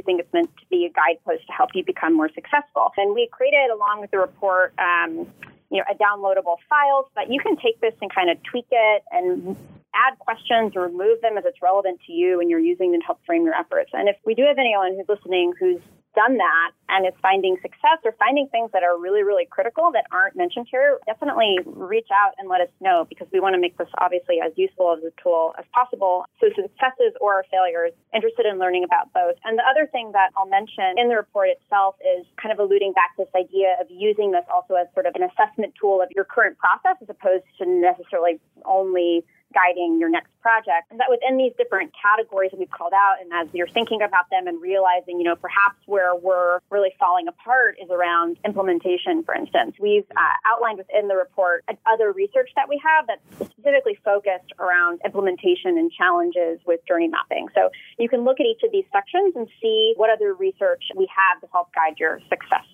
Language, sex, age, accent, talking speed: English, female, 30-49, American, 220 wpm